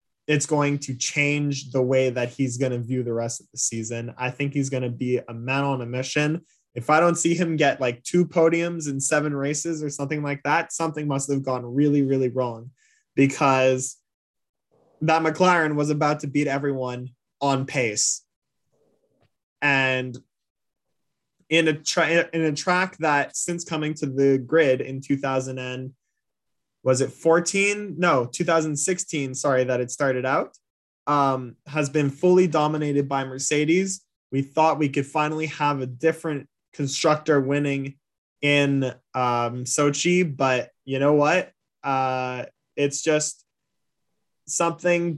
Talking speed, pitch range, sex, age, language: 150 wpm, 130-155 Hz, male, 20-39, English